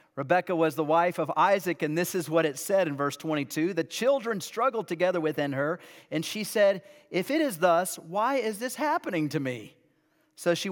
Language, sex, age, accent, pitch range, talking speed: English, male, 40-59, American, 155-195 Hz, 200 wpm